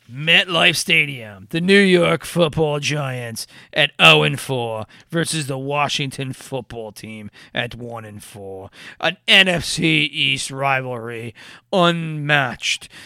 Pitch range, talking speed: 130-175 Hz, 95 wpm